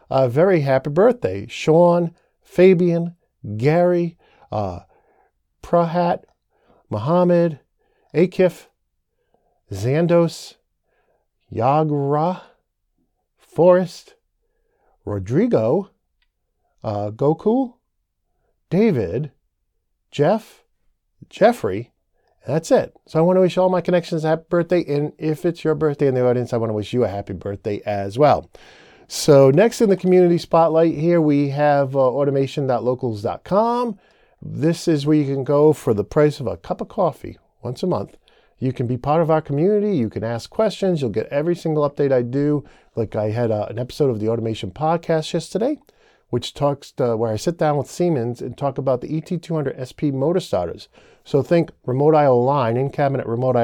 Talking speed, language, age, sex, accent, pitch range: 145 wpm, English, 50-69, male, American, 125-175 Hz